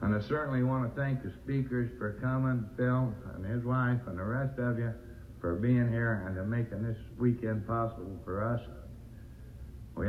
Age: 60-79